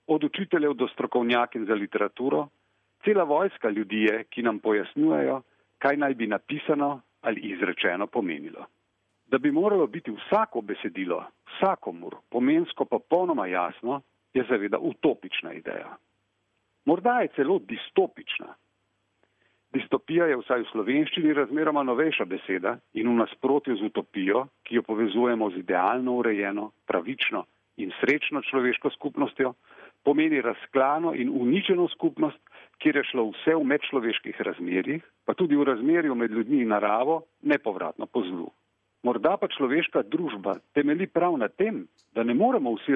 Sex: male